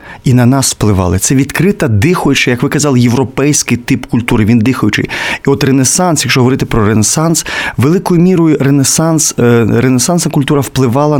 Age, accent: 30-49, native